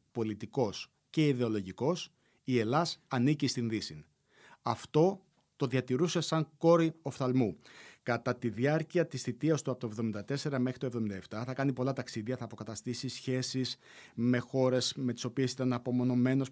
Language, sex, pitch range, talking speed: Greek, male, 110-135 Hz, 145 wpm